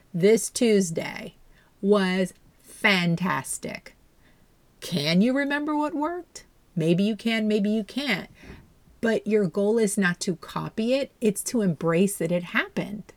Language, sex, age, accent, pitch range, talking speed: English, female, 40-59, American, 170-215 Hz, 130 wpm